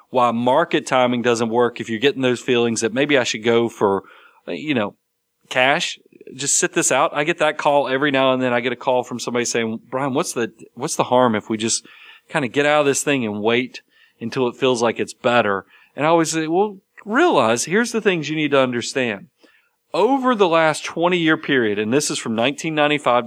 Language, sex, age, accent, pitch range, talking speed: English, male, 40-59, American, 115-150 Hz, 220 wpm